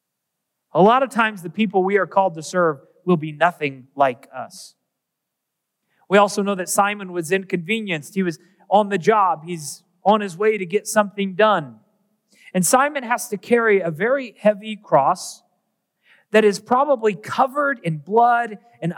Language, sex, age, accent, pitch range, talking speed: English, male, 30-49, American, 180-220 Hz, 165 wpm